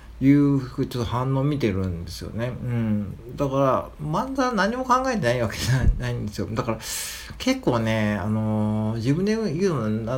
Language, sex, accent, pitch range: Japanese, male, native, 105-140 Hz